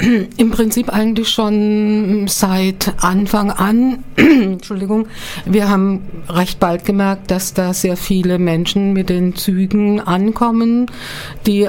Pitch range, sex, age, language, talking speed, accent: 185-210 Hz, female, 50-69, German, 120 wpm, German